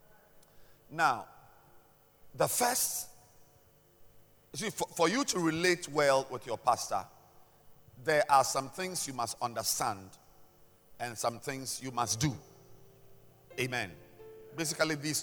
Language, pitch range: English, 115-175 Hz